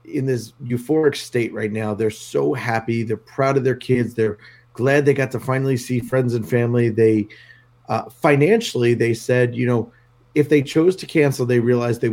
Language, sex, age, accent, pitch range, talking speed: English, male, 30-49, American, 115-135 Hz, 195 wpm